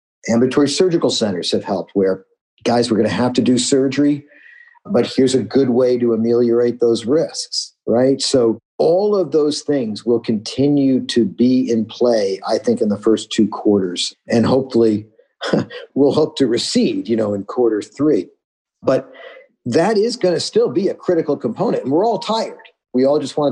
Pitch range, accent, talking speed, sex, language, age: 115-160 Hz, American, 180 wpm, male, English, 50-69